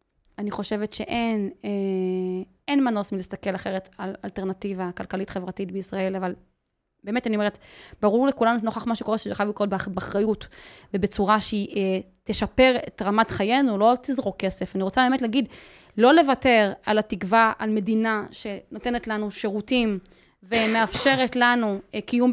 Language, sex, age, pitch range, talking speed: Hebrew, female, 20-39, 195-235 Hz, 135 wpm